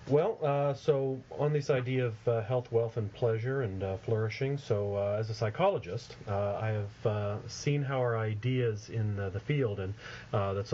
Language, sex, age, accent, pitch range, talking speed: English, male, 40-59, American, 100-125 Hz, 195 wpm